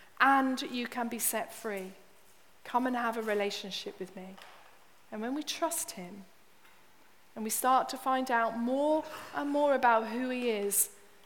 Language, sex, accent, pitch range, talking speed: English, female, British, 210-295 Hz, 165 wpm